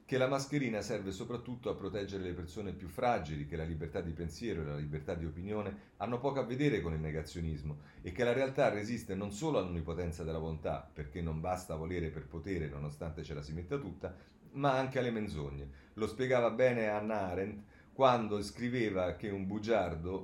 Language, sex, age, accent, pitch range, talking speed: Italian, male, 40-59, native, 80-110 Hz, 190 wpm